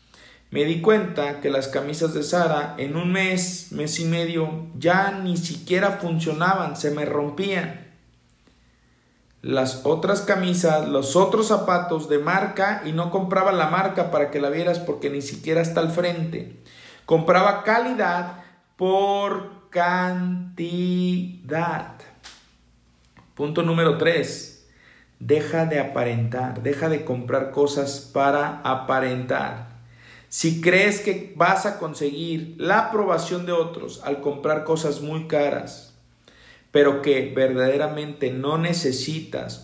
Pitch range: 135-175 Hz